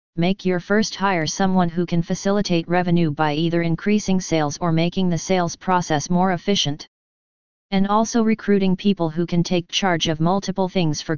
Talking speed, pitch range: 170 wpm, 165-195 Hz